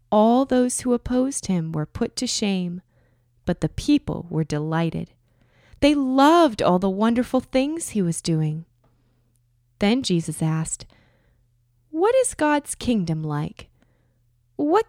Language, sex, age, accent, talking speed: English, female, 20-39, American, 130 wpm